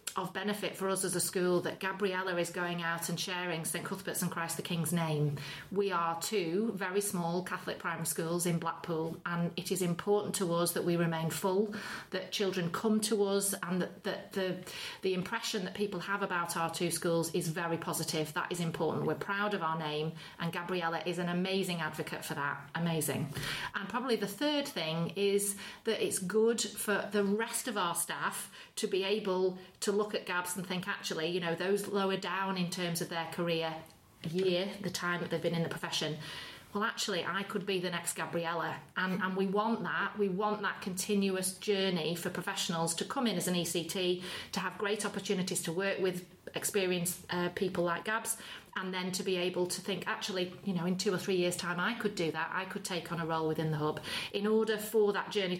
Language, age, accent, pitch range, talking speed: English, 30-49, British, 170-200 Hz, 210 wpm